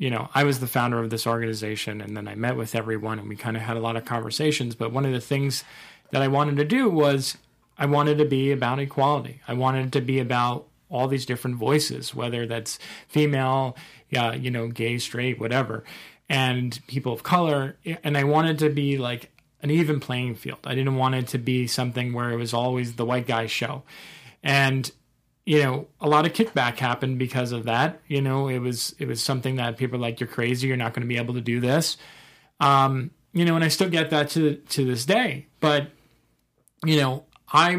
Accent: American